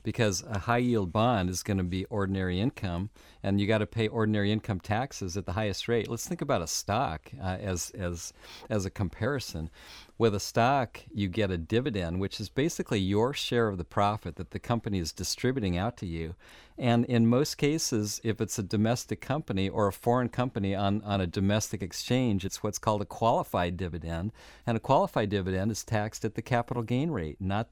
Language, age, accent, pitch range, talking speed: English, 50-69, American, 95-120 Hz, 200 wpm